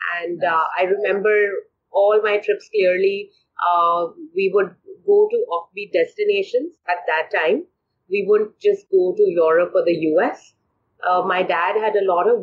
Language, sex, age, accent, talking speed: English, female, 30-49, Indian, 165 wpm